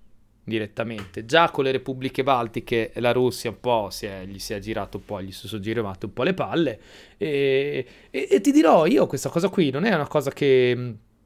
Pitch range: 120-190 Hz